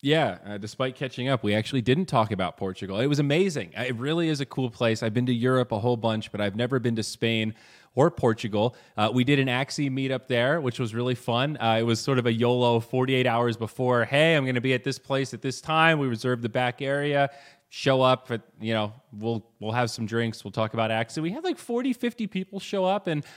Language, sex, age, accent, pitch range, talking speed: English, male, 20-39, American, 110-140 Hz, 240 wpm